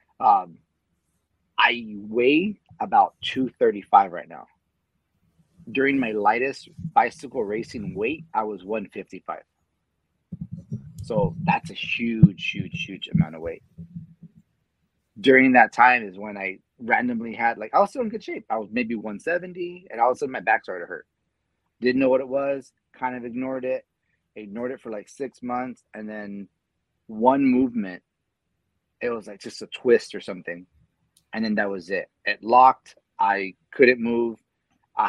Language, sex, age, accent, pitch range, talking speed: English, male, 30-49, American, 100-165 Hz, 155 wpm